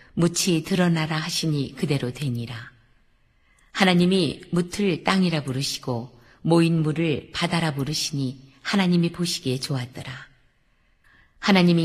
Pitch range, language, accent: 130-180 Hz, Korean, native